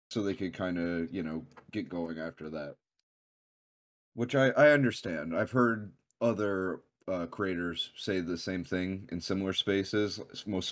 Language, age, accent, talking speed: English, 30-49, American, 155 wpm